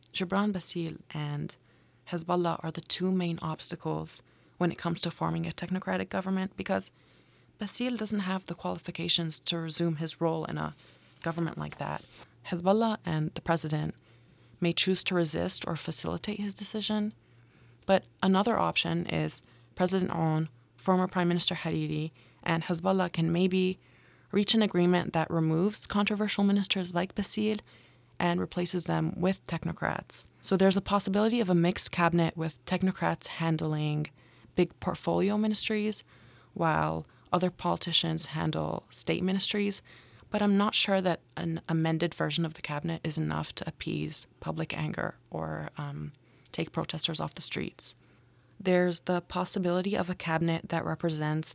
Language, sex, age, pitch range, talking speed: English, female, 20-39, 155-185 Hz, 145 wpm